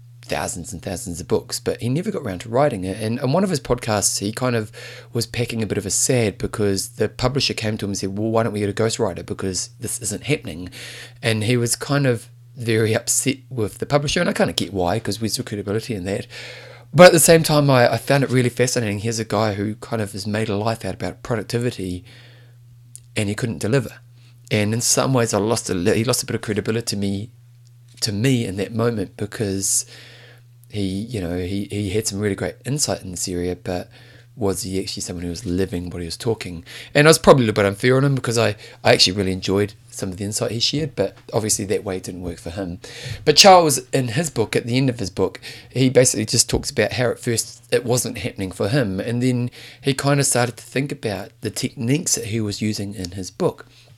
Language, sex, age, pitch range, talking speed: English, male, 30-49, 100-125 Hz, 240 wpm